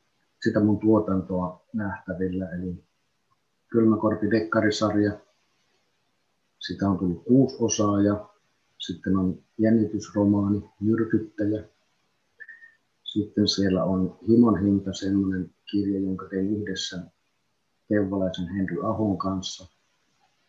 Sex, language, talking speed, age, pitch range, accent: male, Finnish, 90 wpm, 50-69, 95-105 Hz, native